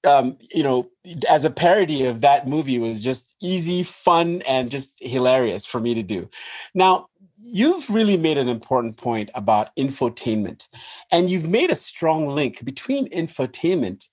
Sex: male